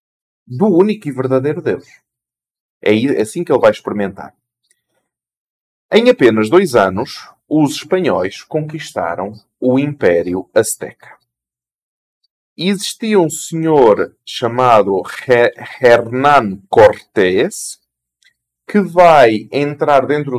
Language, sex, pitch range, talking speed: Portuguese, male, 100-150 Hz, 90 wpm